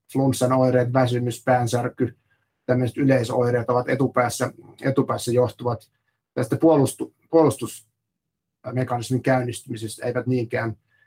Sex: male